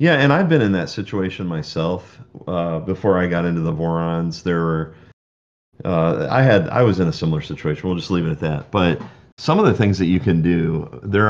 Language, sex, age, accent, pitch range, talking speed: English, male, 40-59, American, 85-100 Hz, 225 wpm